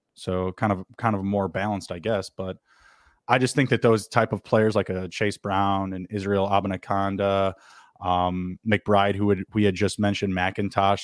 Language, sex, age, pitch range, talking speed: English, male, 20-39, 100-115 Hz, 190 wpm